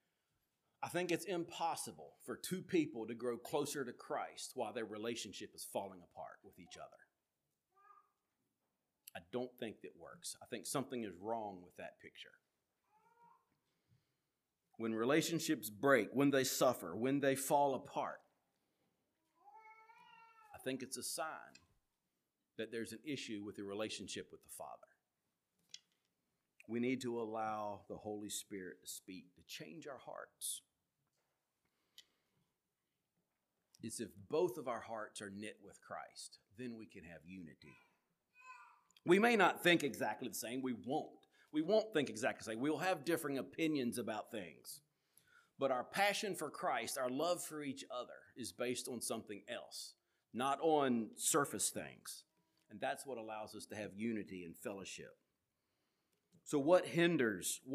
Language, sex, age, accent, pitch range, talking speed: English, male, 40-59, American, 110-170 Hz, 145 wpm